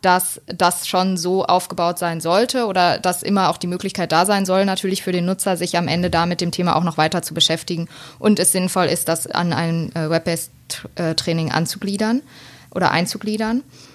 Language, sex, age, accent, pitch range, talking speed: German, female, 20-39, German, 175-205 Hz, 190 wpm